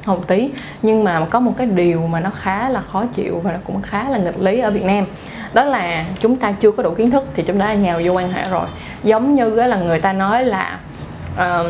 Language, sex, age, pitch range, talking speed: Vietnamese, female, 20-39, 180-235 Hz, 250 wpm